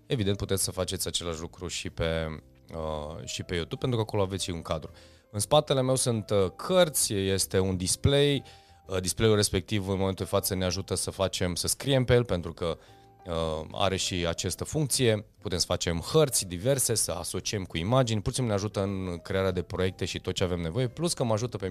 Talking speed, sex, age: 215 wpm, male, 30-49